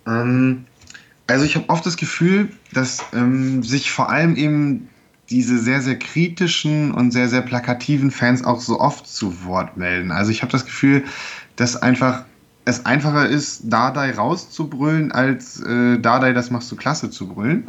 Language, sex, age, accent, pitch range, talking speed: German, male, 10-29, German, 115-140 Hz, 165 wpm